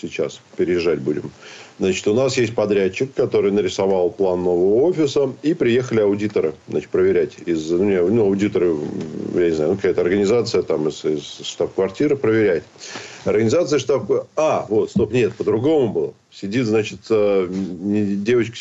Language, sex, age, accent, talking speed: Russian, male, 40-59, native, 135 wpm